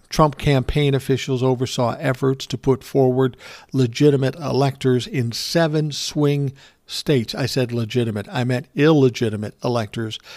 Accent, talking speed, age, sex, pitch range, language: American, 120 wpm, 50-69, male, 125-145 Hz, English